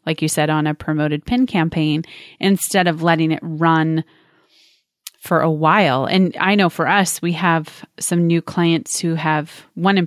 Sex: female